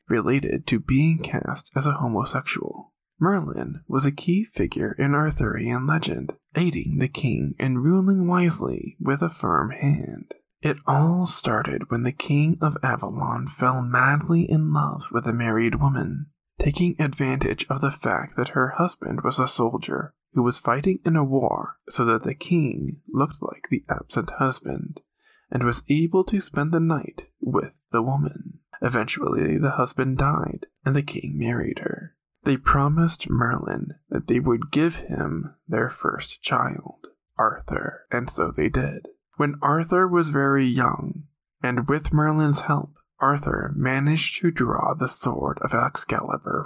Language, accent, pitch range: English, American, 130-165 Hz